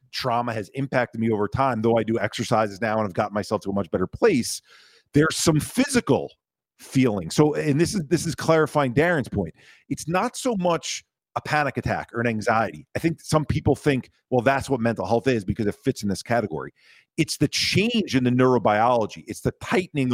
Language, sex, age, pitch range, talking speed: English, male, 40-59, 110-140 Hz, 205 wpm